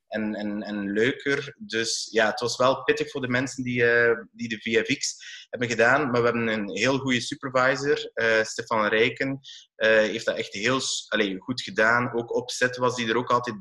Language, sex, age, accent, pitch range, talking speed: Dutch, male, 20-39, Austrian, 110-135 Hz, 200 wpm